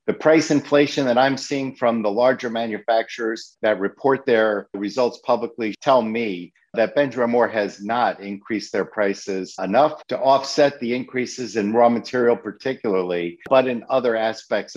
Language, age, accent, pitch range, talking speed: English, 50-69, American, 105-130 Hz, 155 wpm